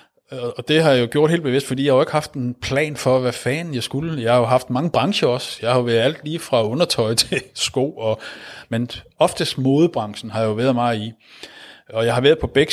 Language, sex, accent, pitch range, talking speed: Danish, male, native, 115-140 Hz, 260 wpm